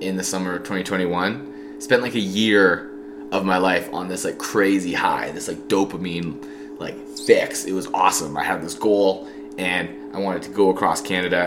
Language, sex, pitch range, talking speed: English, male, 95-140 Hz, 190 wpm